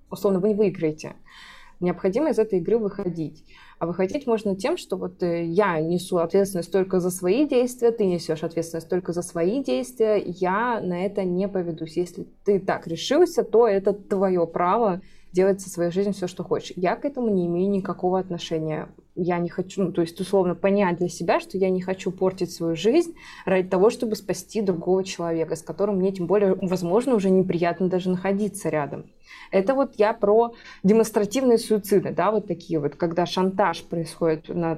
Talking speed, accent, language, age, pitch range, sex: 180 wpm, native, Russian, 20-39, 175-210 Hz, female